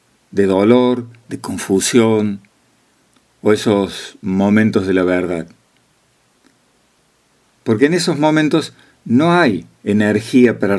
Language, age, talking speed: Spanish, 50-69, 100 wpm